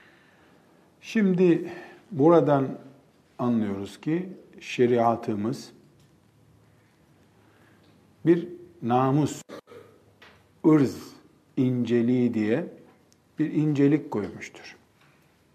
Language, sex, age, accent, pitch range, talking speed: Turkish, male, 50-69, native, 120-155 Hz, 50 wpm